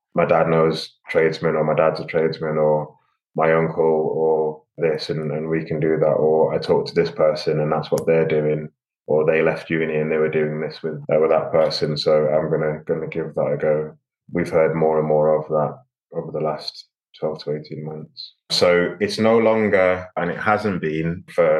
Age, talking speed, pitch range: 20-39, 210 wpm, 75-85 Hz